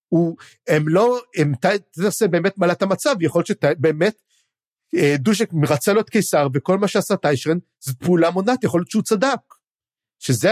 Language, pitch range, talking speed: Hebrew, 150-210 Hz, 160 wpm